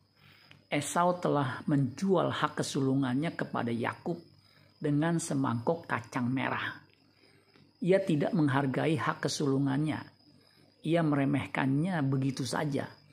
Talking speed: 90 wpm